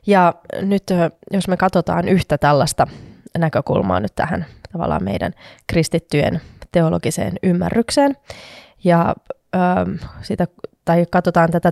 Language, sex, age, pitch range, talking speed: Finnish, female, 20-39, 165-195 Hz, 110 wpm